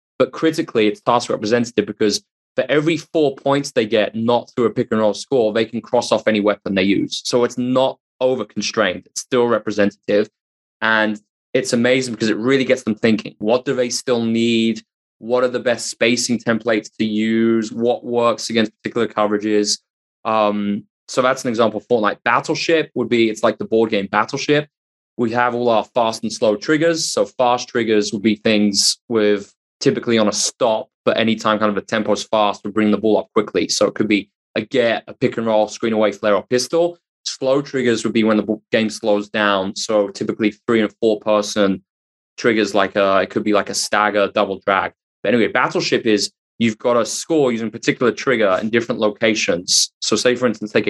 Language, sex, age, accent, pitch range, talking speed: English, male, 20-39, British, 105-120 Hz, 200 wpm